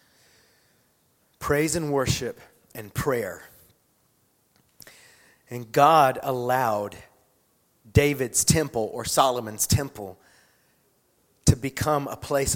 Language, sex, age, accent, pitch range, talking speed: English, male, 30-49, American, 110-140 Hz, 80 wpm